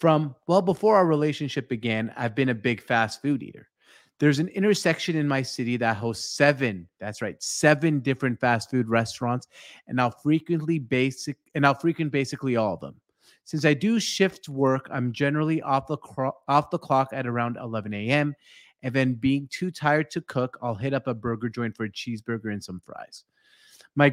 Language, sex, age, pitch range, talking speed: English, male, 30-49, 125-150 Hz, 185 wpm